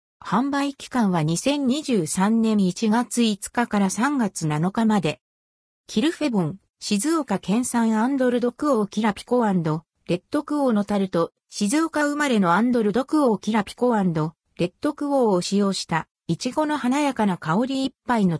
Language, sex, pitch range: Japanese, female, 180-270 Hz